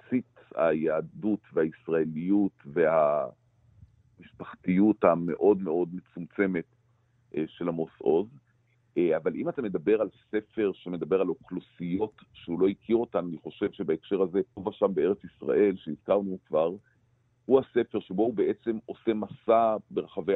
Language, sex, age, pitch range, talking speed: Hebrew, male, 50-69, 95-120 Hz, 120 wpm